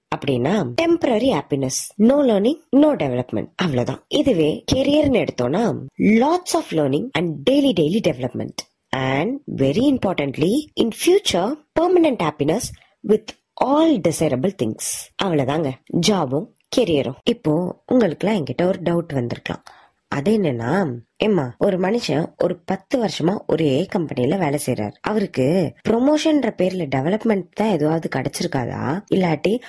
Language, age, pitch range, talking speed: Tamil, 20-39, 150-230 Hz, 60 wpm